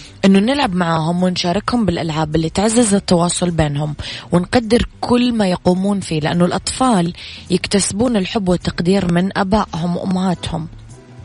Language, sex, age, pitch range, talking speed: Arabic, female, 20-39, 165-195 Hz, 115 wpm